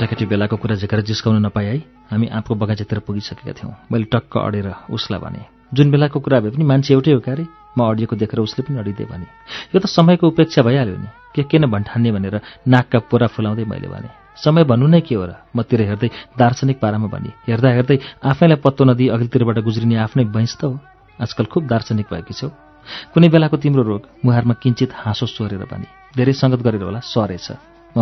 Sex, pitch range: male, 110-130 Hz